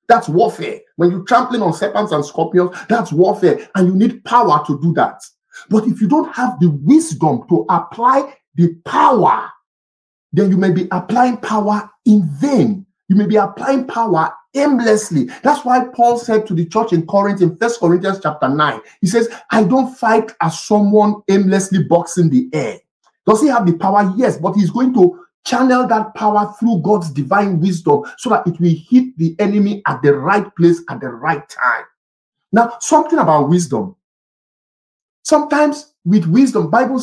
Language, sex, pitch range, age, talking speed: English, male, 170-230 Hz, 50-69, 175 wpm